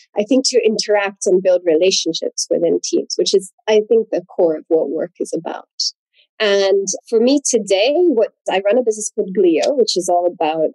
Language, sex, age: English, female, 30-49